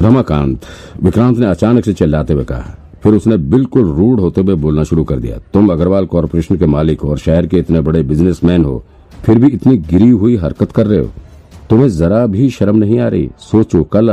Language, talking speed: Hindi, 210 wpm